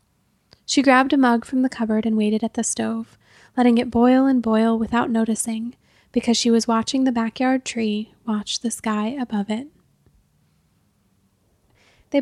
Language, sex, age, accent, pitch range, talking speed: English, female, 10-29, American, 220-245 Hz, 155 wpm